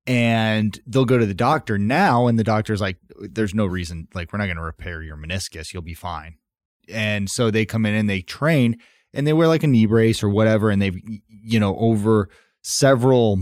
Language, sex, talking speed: English, male, 215 wpm